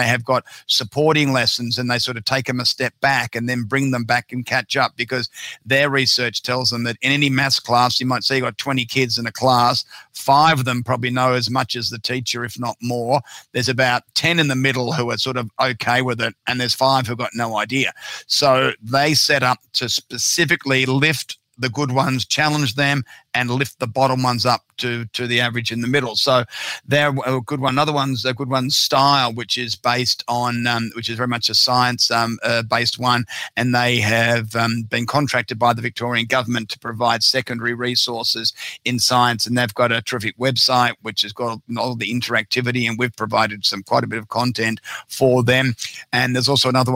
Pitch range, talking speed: 115-130 Hz, 215 wpm